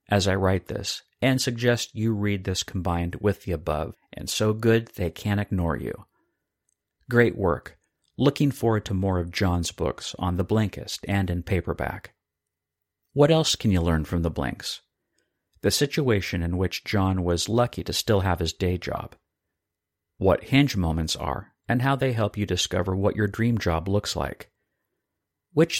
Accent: American